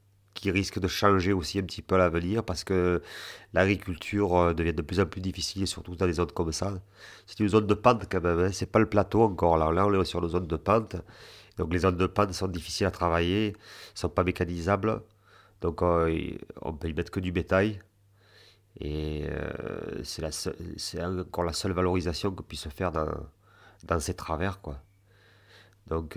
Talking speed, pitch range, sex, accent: 205 wpm, 80-100 Hz, male, French